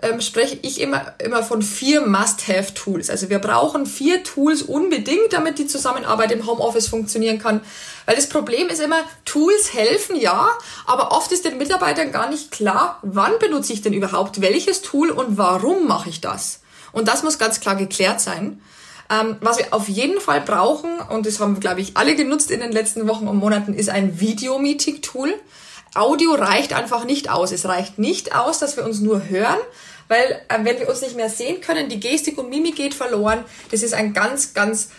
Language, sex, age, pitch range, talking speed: German, female, 20-39, 205-300 Hz, 190 wpm